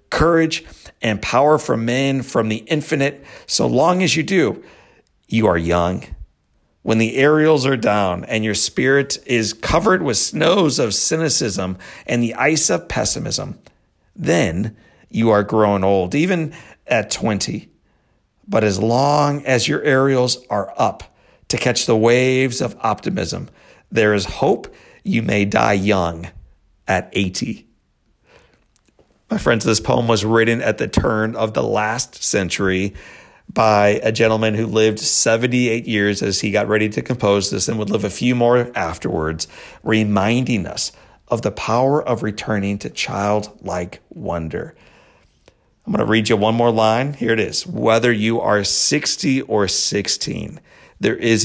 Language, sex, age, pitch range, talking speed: English, male, 50-69, 100-125 Hz, 150 wpm